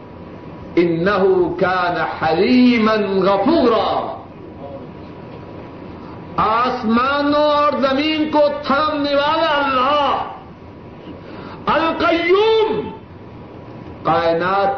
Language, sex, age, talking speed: Urdu, male, 60-79, 55 wpm